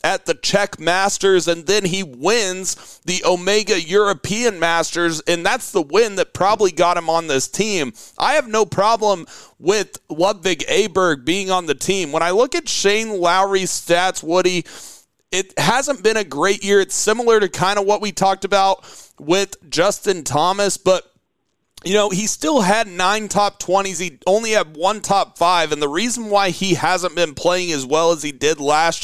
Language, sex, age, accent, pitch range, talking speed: English, male, 30-49, American, 170-200 Hz, 185 wpm